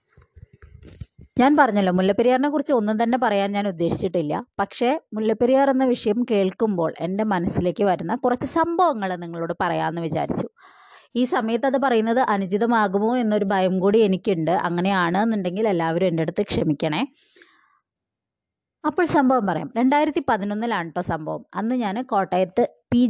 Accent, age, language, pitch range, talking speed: native, 20-39, Malayalam, 180-250 Hz, 120 wpm